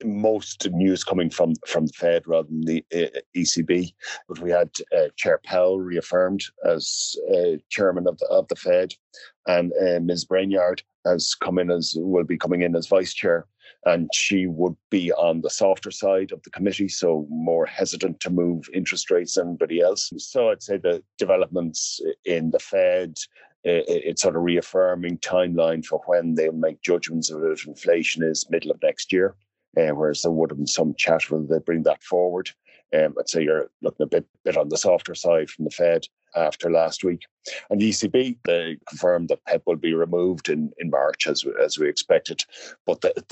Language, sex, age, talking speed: English, male, 50-69, 185 wpm